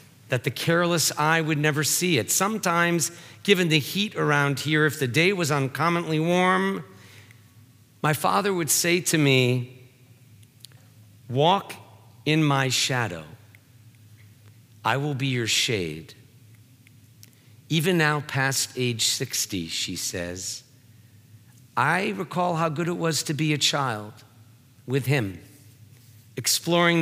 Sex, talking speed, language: male, 120 wpm, English